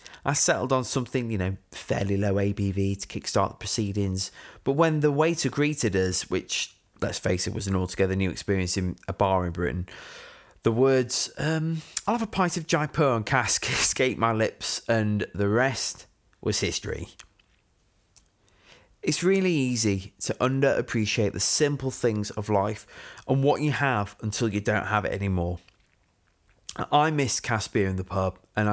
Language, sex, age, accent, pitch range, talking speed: English, male, 20-39, British, 95-125 Hz, 165 wpm